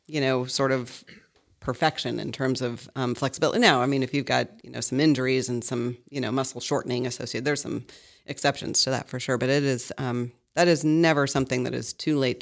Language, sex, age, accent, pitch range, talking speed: English, female, 40-59, American, 130-155 Hz, 220 wpm